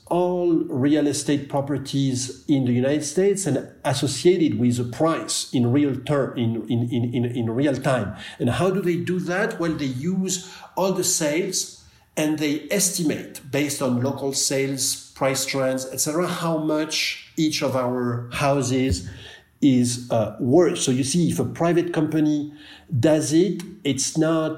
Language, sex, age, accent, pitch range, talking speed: English, male, 50-69, French, 125-160 Hz, 160 wpm